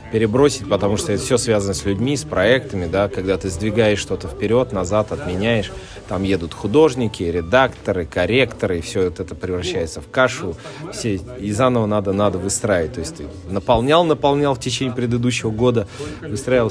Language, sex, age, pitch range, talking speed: Russian, male, 30-49, 95-125 Hz, 160 wpm